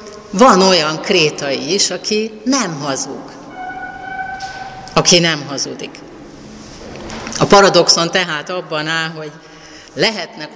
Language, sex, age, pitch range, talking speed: Hungarian, female, 30-49, 150-180 Hz, 95 wpm